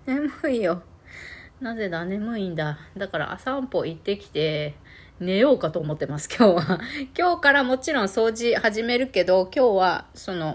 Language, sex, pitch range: Japanese, female, 145-240 Hz